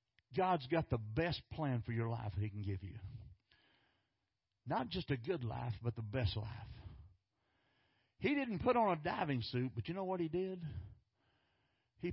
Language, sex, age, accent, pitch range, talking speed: English, male, 60-79, American, 110-140 Hz, 180 wpm